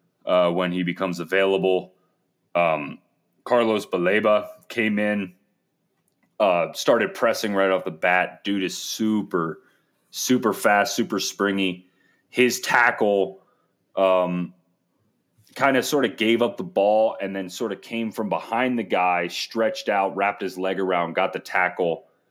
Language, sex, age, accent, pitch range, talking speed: English, male, 30-49, American, 85-105 Hz, 140 wpm